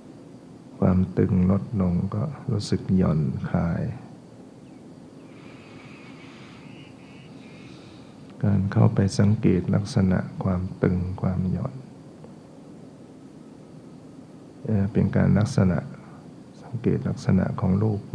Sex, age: male, 60-79